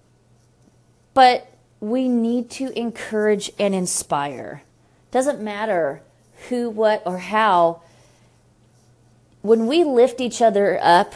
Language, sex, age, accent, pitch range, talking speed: English, female, 30-49, American, 165-230 Hz, 100 wpm